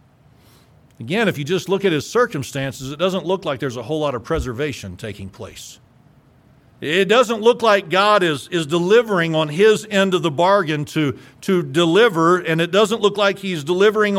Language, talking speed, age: English, 185 wpm, 50-69